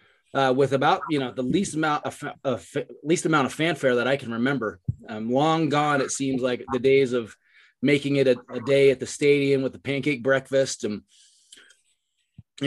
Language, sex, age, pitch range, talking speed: English, male, 30-49, 115-145 Hz, 195 wpm